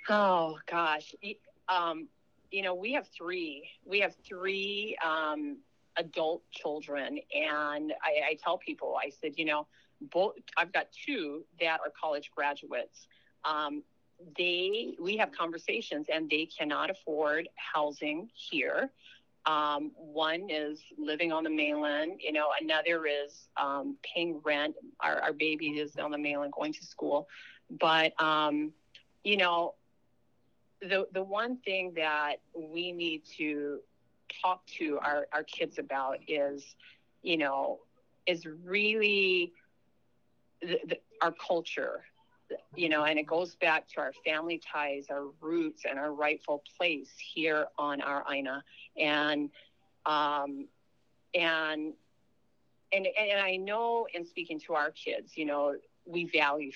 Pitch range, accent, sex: 150-185 Hz, American, female